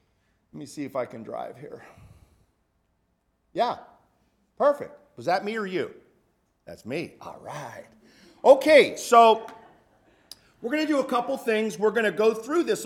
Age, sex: 50-69, male